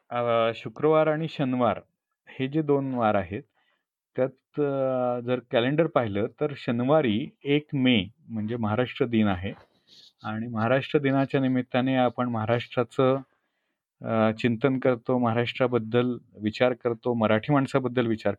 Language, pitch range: Marathi, 115-145 Hz